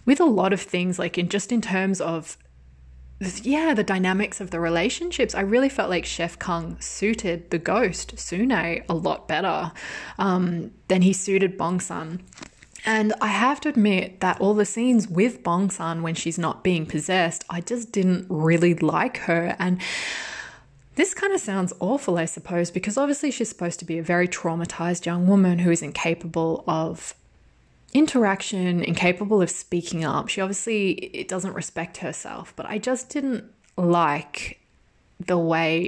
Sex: female